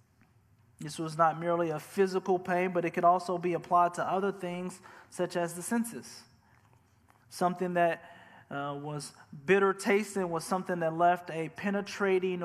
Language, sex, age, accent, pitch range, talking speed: English, male, 20-39, American, 155-180 Hz, 155 wpm